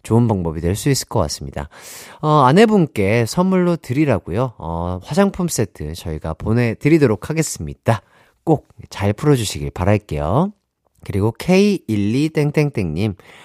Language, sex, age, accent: Korean, male, 40-59, native